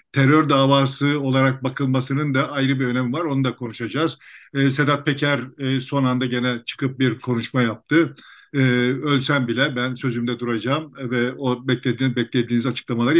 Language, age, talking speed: Turkish, 50-69, 155 wpm